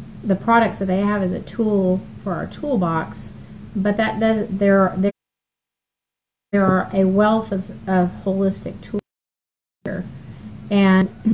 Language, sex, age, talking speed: English, female, 40-59, 140 wpm